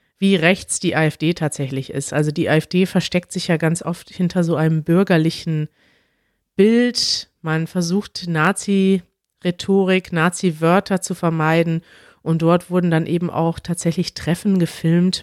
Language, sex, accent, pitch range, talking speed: German, female, German, 165-190 Hz, 135 wpm